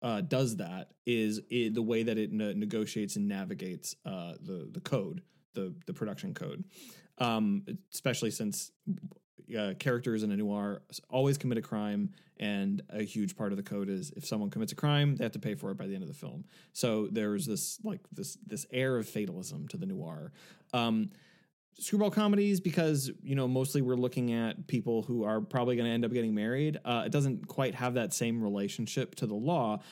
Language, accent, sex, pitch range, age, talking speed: English, American, male, 110-170 Hz, 20-39, 200 wpm